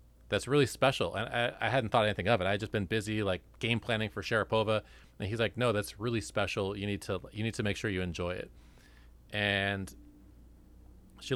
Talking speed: 215 wpm